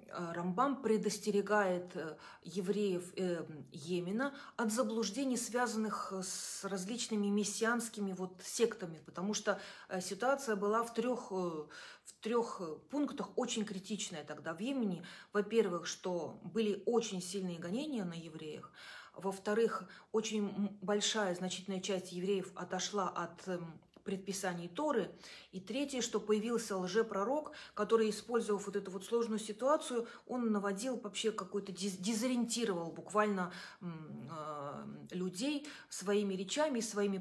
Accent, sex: native, female